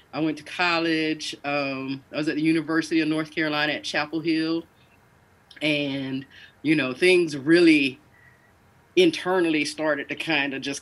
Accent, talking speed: American, 150 wpm